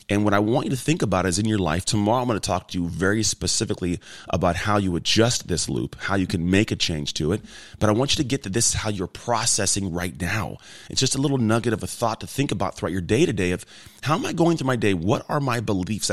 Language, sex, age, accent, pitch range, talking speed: English, male, 30-49, American, 95-125 Hz, 285 wpm